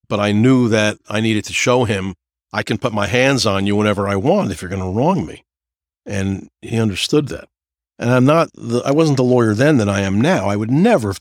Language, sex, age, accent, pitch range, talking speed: English, male, 50-69, American, 95-115 Hz, 240 wpm